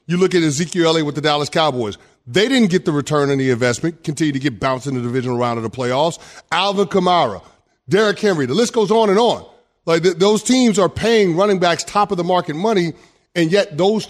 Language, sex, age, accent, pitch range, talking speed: English, male, 30-49, American, 155-205 Hz, 220 wpm